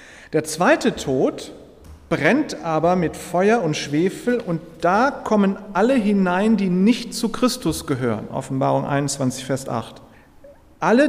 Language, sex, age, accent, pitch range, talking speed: German, male, 40-59, German, 140-205 Hz, 130 wpm